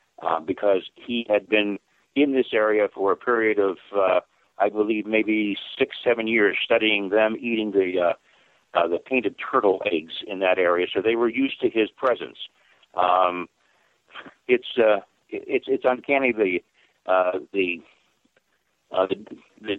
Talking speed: 160 wpm